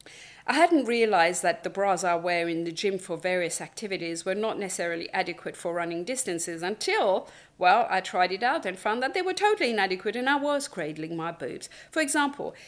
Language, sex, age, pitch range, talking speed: English, female, 50-69, 175-245 Hz, 200 wpm